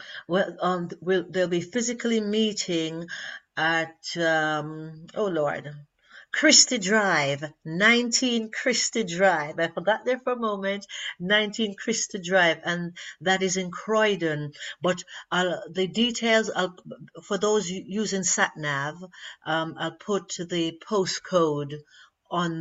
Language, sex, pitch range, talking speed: English, female, 160-220 Hz, 120 wpm